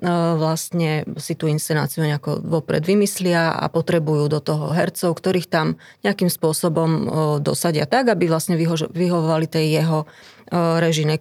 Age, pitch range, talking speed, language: 30-49, 155-175 Hz, 130 wpm, Slovak